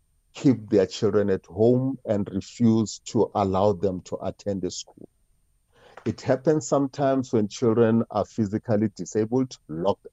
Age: 50-69